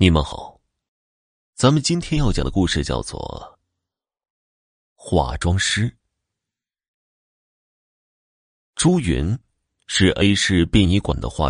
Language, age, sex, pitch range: Chinese, 30-49, male, 80-115 Hz